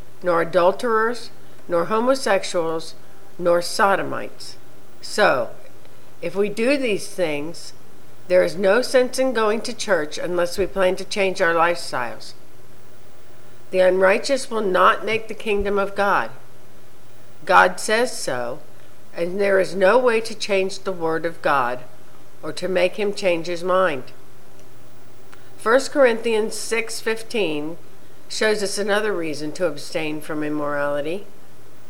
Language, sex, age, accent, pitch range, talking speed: English, female, 60-79, American, 170-220 Hz, 130 wpm